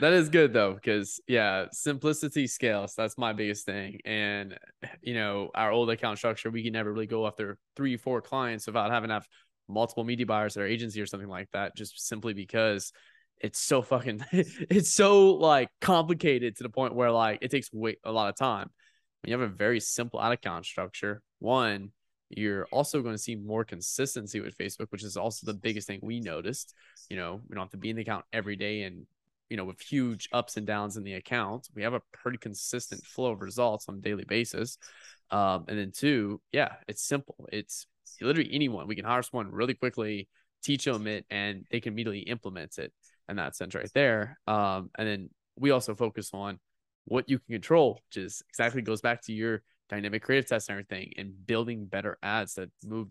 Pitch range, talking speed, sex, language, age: 100-120 Hz, 210 wpm, male, English, 20-39